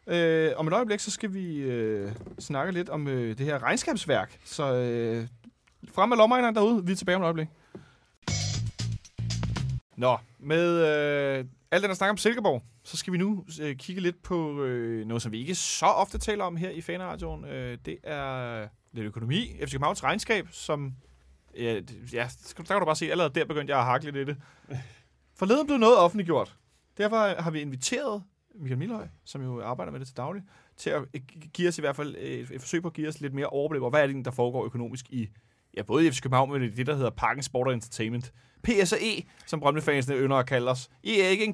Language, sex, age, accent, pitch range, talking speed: Danish, male, 30-49, native, 125-180 Hz, 210 wpm